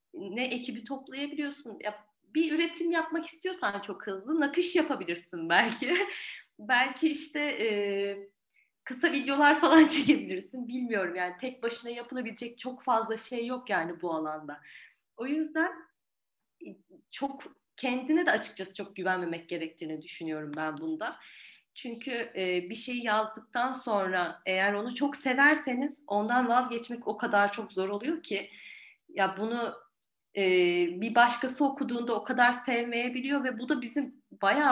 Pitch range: 205-285 Hz